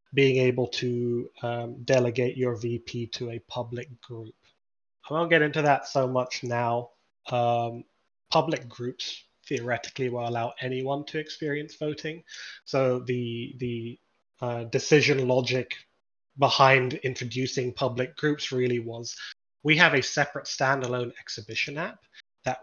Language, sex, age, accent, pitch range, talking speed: English, male, 20-39, British, 120-140 Hz, 130 wpm